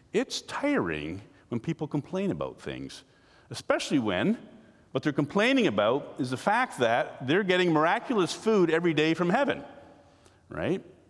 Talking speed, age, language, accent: 140 wpm, 50-69, English, American